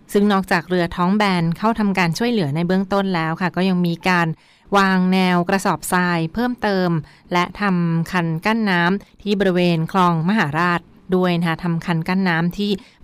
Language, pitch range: Thai, 170-195 Hz